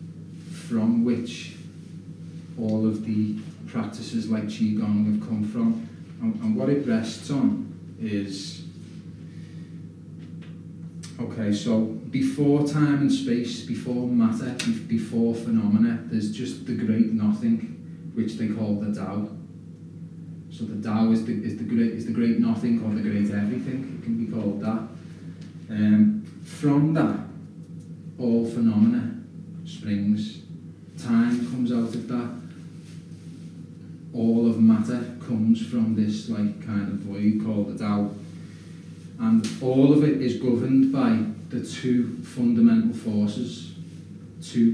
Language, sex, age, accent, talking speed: English, male, 30-49, British, 120 wpm